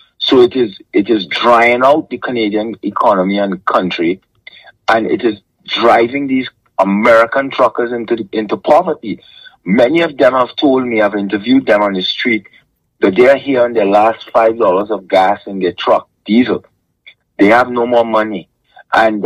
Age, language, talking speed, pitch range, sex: 60-79, English, 170 wpm, 110-155 Hz, male